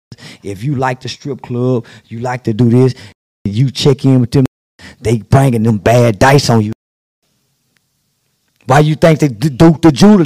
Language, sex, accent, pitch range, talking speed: English, male, American, 145-220 Hz, 180 wpm